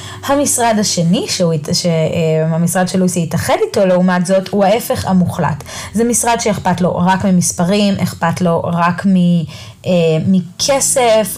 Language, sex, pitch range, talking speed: Hebrew, female, 170-215 Hz, 115 wpm